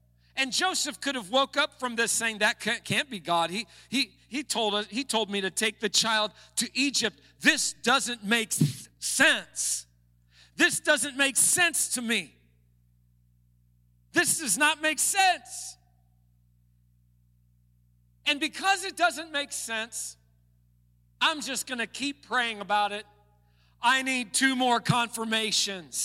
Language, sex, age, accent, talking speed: English, male, 50-69, American, 145 wpm